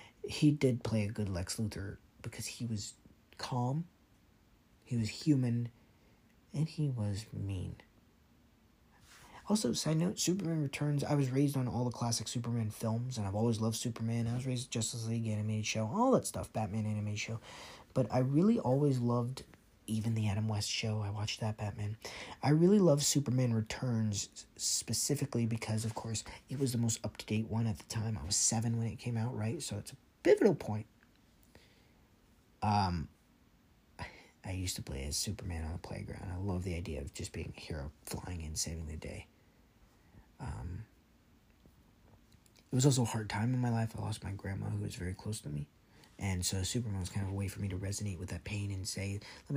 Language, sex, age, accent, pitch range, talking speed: English, male, 40-59, American, 100-120 Hz, 190 wpm